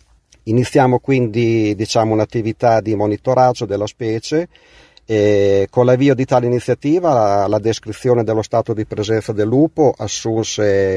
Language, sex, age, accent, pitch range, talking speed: Italian, male, 40-59, native, 100-125 Hz, 125 wpm